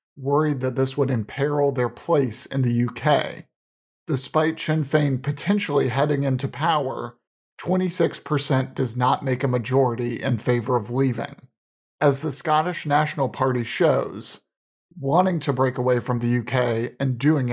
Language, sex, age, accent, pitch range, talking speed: English, male, 40-59, American, 125-145 Hz, 145 wpm